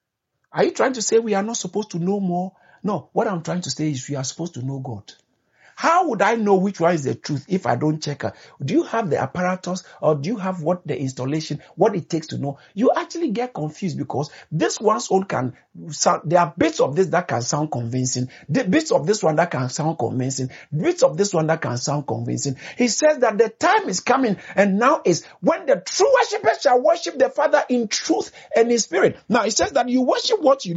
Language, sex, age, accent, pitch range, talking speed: English, male, 50-69, Nigerian, 145-225 Hz, 240 wpm